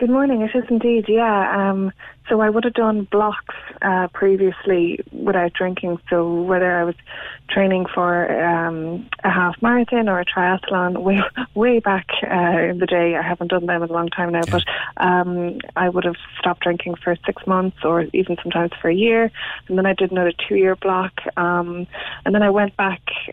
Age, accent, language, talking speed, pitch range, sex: 20-39, Irish, English, 195 wpm, 175-195 Hz, female